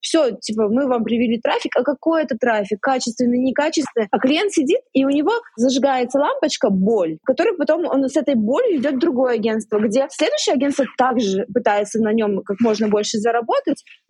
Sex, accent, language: female, native, Russian